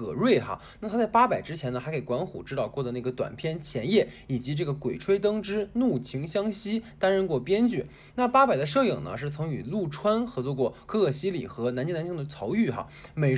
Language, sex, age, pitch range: Chinese, male, 20-39, 140-215 Hz